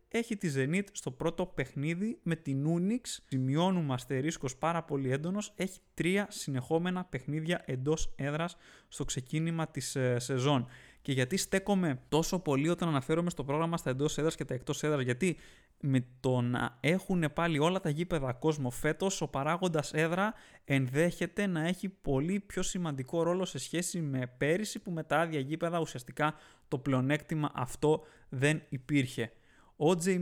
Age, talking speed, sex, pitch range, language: 20-39, 155 wpm, male, 135-170 Hz, Greek